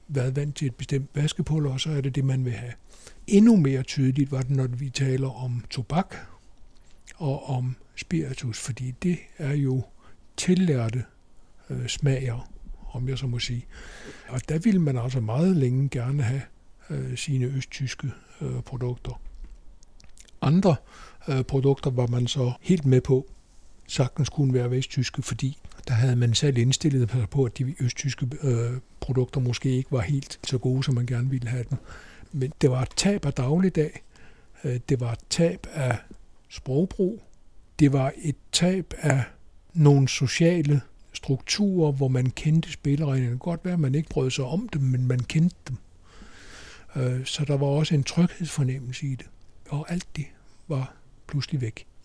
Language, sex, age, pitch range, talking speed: Danish, male, 60-79, 125-145 Hz, 165 wpm